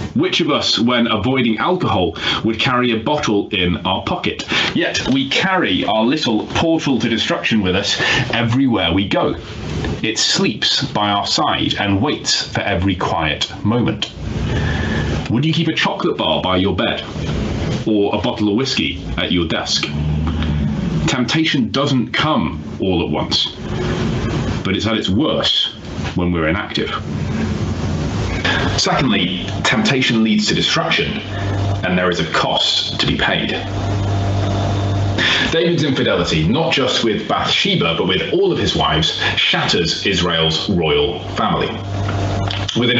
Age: 30-49